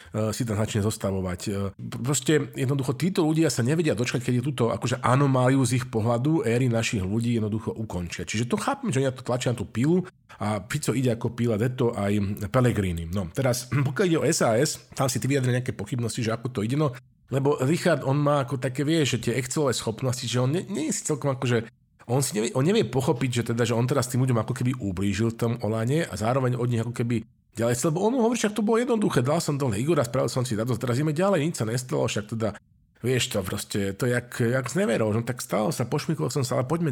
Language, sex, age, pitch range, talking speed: Slovak, male, 40-59, 115-145 Hz, 230 wpm